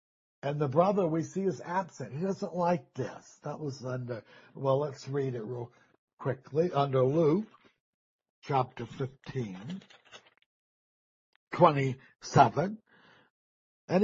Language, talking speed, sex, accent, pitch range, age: English, 110 wpm, male, American, 135-195 Hz, 60-79